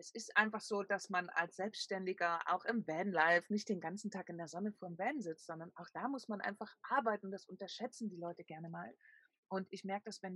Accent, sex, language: German, female, German